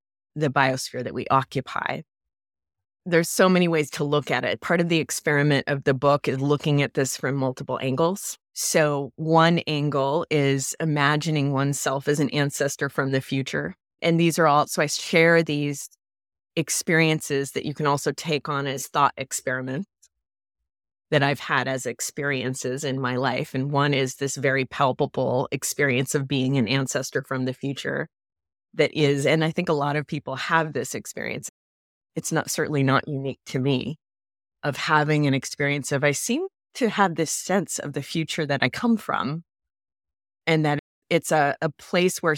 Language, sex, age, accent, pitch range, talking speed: English, female, 20-39, American, 130-155 Hz, 175 wpm